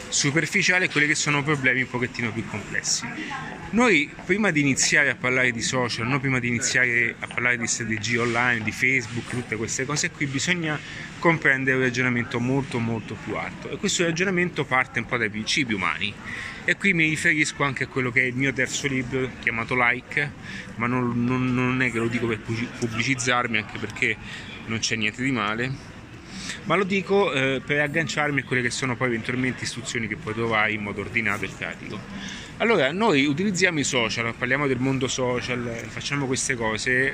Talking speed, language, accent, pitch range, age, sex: 185 wpm, Italian, native, 120-150 Hz, 30-49, male